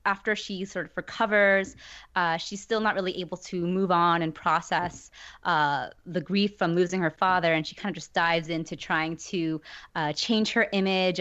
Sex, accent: female, American